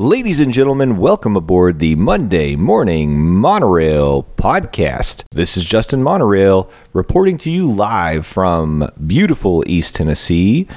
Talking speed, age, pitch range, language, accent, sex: 125 wpm, 30-49, 90-110 Hz, English, American, male